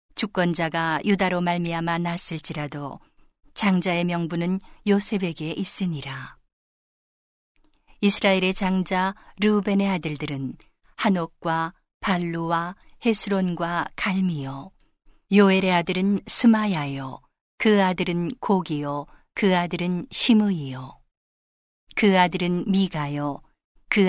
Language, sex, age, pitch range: Korean, female, 40-59, 165-195 Hz